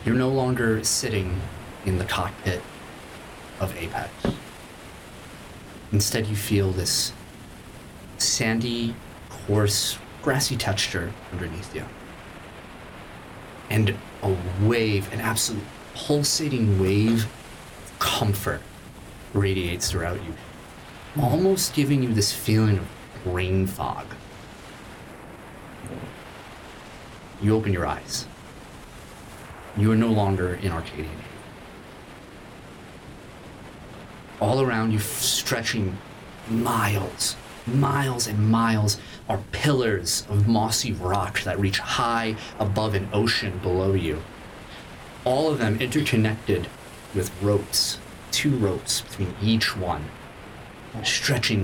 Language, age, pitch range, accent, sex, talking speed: English, 30-49, 95-115 Hz, American, male, 95 wpm